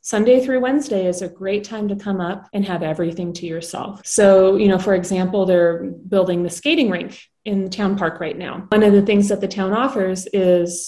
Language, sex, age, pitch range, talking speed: English, female, 30-49, 180-220 Hz, 220 wpm